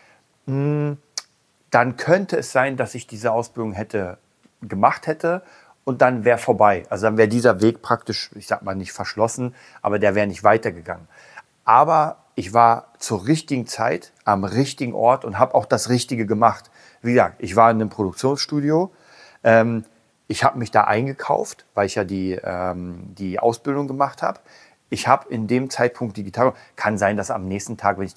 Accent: German